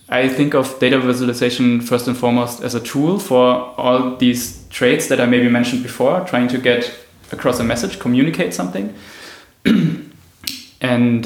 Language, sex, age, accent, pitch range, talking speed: English, male, 20-39, German, 115-125 Hz, 155 wpm